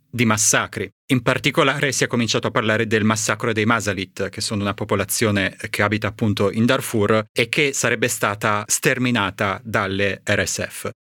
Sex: male